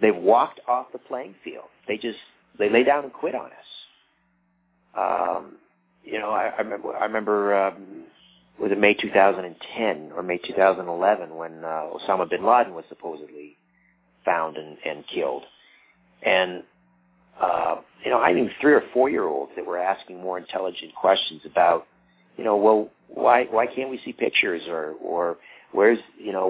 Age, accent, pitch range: 40-59, American, 80-110 Hz